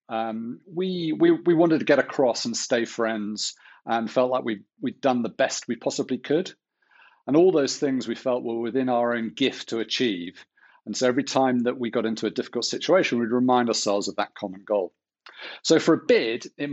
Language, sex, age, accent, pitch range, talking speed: English, male, 40-59, British, 110-140 Hz, 210 wpm